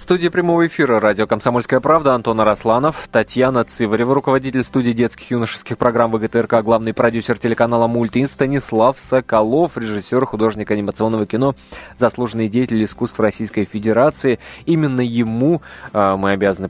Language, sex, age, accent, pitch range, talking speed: Russian, male, 20-39, native, 110-130 Hz, 135 wpm